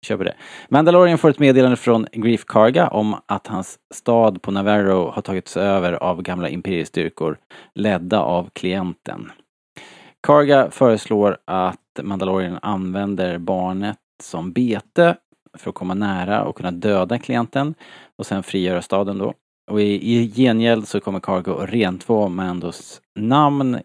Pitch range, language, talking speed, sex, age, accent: 90-115 Hz, Swedish, 130 wpm, male, 30-49, Norwegian